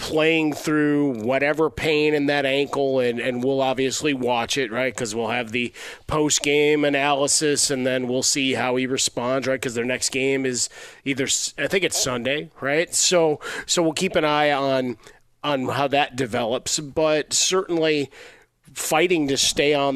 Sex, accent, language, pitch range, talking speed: male, American, English, 130-155 Hz, 170 wpm